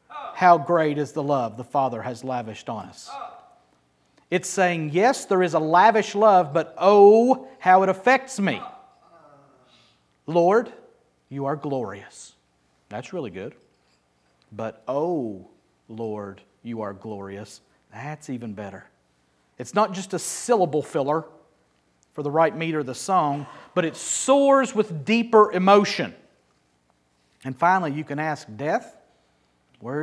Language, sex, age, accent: English, male, 40-59, American